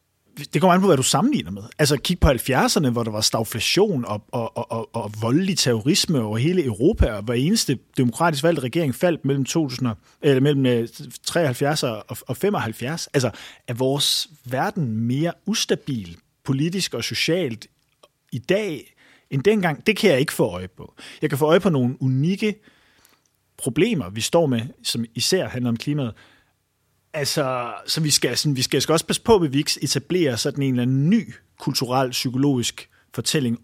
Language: Danish